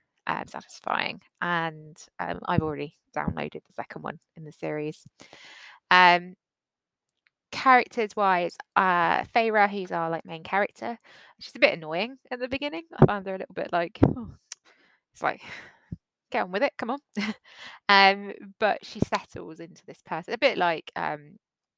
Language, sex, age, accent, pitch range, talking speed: English, female, 20-39, British, 160-215 Hz, 155 wpm